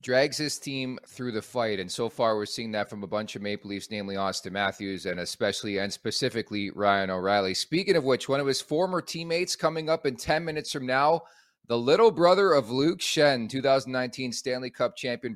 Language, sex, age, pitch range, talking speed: English, male, 30-49, 110-130 Hz, 200 wpm